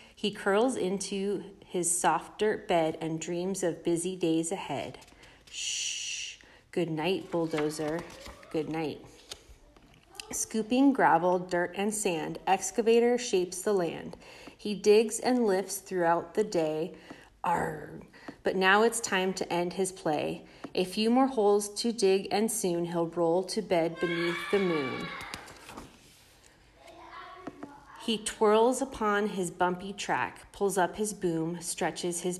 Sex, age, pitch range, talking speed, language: female, 30-49, 165-205 Hz, 130 wpm, English